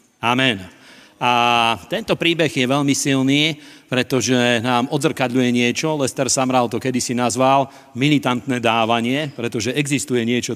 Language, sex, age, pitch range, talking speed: Slovak, male, 40-59, 120-135 Hz, 120 wpm